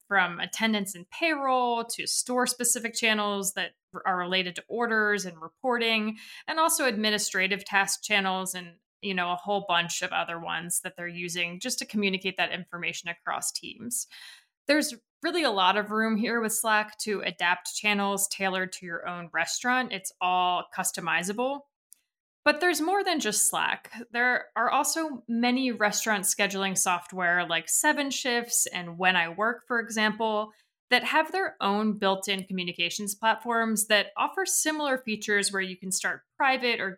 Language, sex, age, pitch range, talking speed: English, female, 20-39, 185-240 Hz, 155 wpm